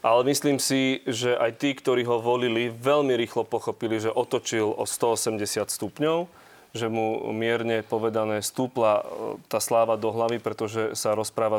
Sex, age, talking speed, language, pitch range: male, 30-49, 150 wpm, Slovak, 110-135 Hz